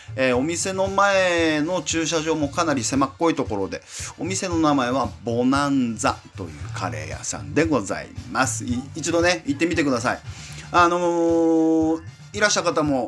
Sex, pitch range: male, 110-175 Hz